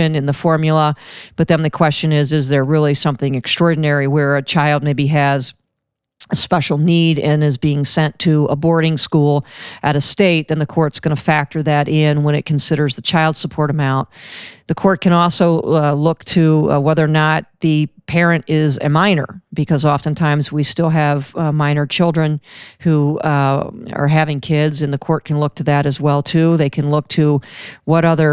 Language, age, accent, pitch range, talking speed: English, 40-59, American, 145-160 Hz, 195 wpm